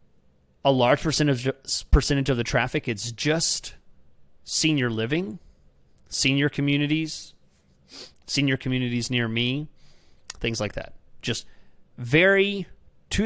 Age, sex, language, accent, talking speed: 30-49, male, English, American, 105 wpm